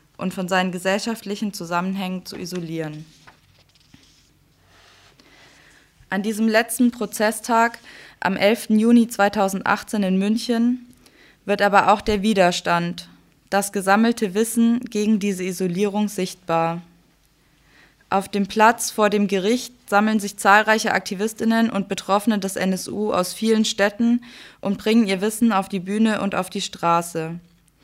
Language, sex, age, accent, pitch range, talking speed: German, female, 20-39, German, 185-220 Hz, 125 wpm